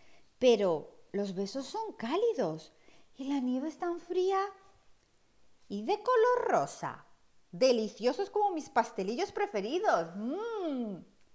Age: 50-69